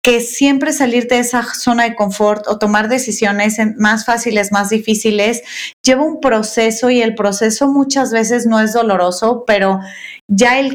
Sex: female